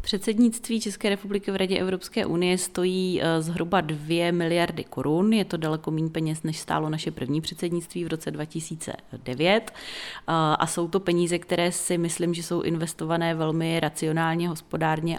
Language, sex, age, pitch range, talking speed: Czech, female, 30-49, 155-175 Hz, 150 wpm